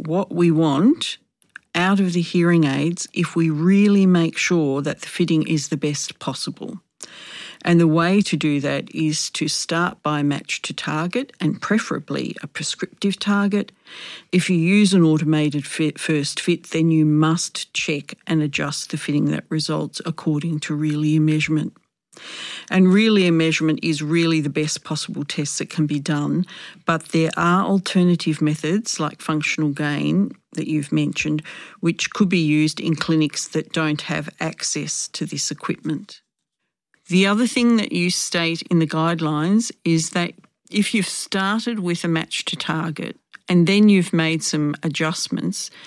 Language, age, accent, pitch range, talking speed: English, 50-69, Australian, 155-185 Hz, 160 wpm